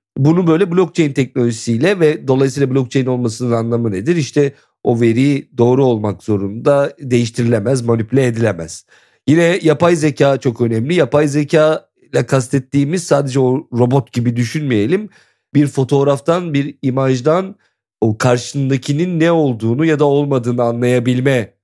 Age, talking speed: 50-69, 125 wpm